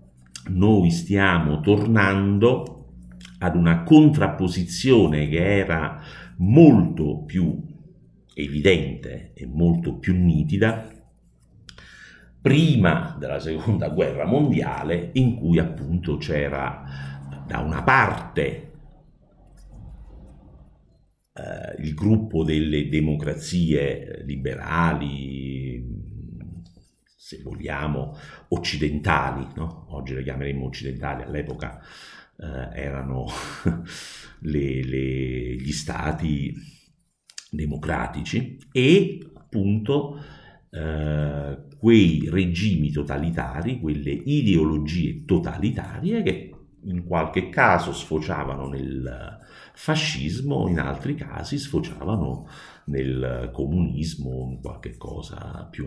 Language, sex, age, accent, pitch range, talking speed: Italian, male, 50-69, native, 70-100 Hz, 80 wpm